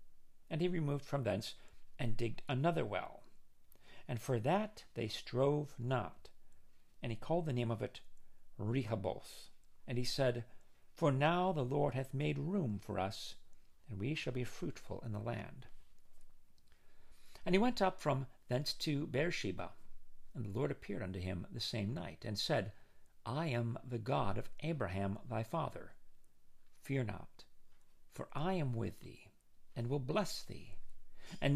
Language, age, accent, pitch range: English, 50-69, American, 110-160 Hz